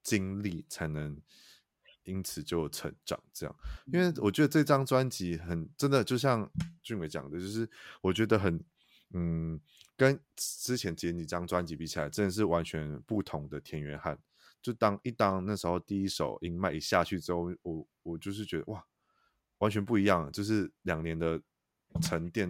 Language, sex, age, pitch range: Chinese, male, 20-39, 80-100 Hz